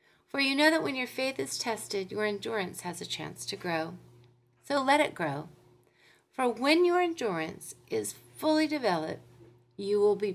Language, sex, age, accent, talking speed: English, female, 40-59, American, 175 wpm